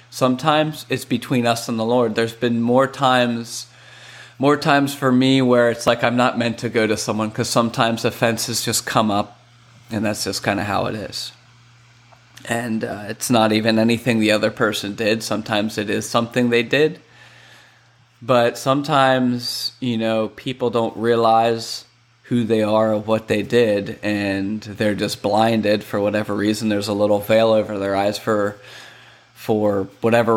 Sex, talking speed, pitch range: male, 170 wpm, 110-120 Hz